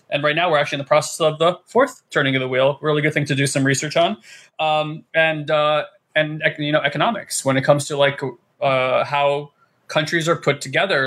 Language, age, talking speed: English, 20-39, 220 wpm